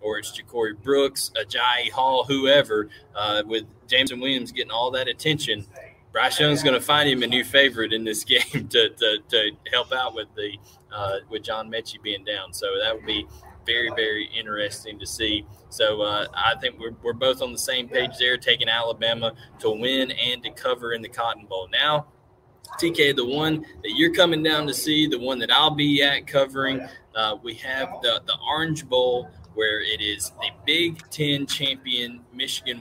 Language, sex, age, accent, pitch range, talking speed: English, male, 20-39, American, 115-140 Hz, 190 wpm